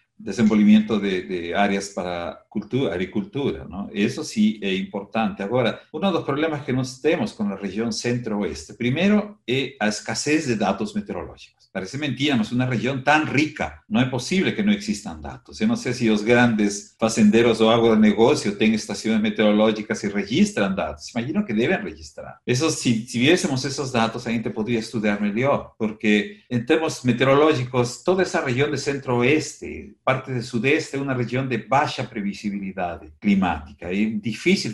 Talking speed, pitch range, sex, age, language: 170 wpm, 105-150 Hz, male, 50-69, Portuguese